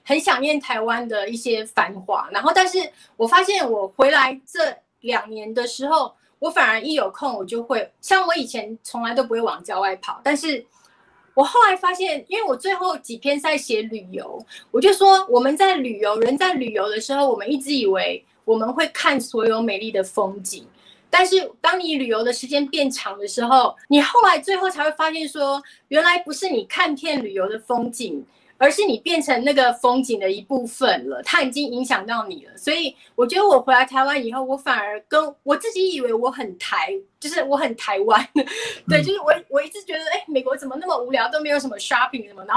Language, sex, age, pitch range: Chinese, female, 30-49, 235-325 Hz